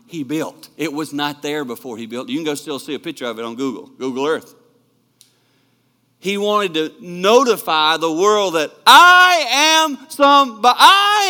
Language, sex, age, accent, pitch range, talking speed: English, male, 50-69, American, 135-220 Hz, 180 wpm